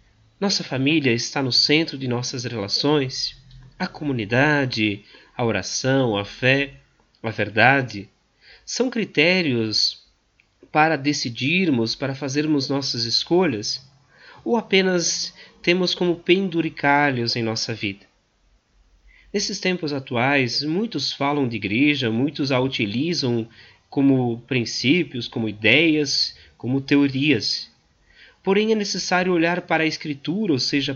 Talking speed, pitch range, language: 110 wpm, 120-170 Hz, Portuguese